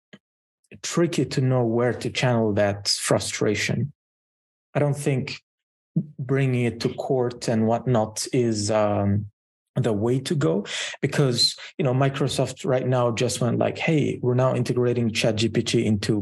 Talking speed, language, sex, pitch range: 140 wpm, English, male, 115-135 Hz